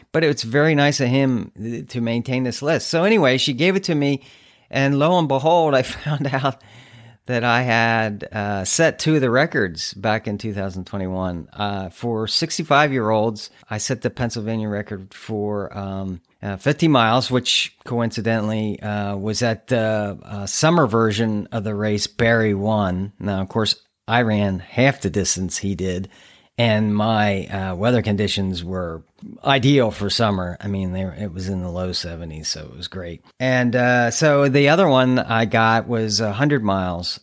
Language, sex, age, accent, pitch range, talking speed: English, male, 40-59, American, 100-130 Hz, 170 wpm